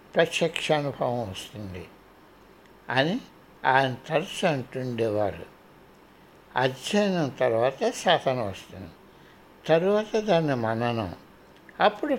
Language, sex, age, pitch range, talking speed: Telugu, male, 60-79, 130-180 Hz, 70 wpm